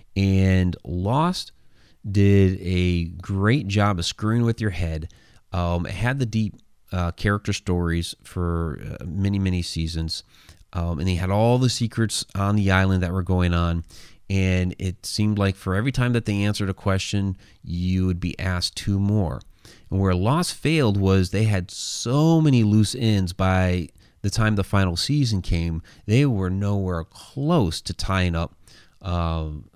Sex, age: male, 30-49